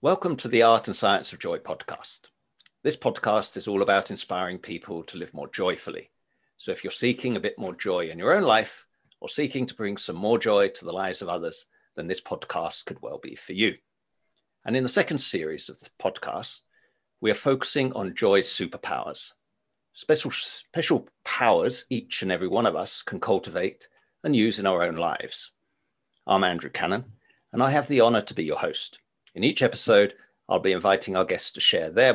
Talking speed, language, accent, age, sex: 200 wpm, English, British, 50-69, male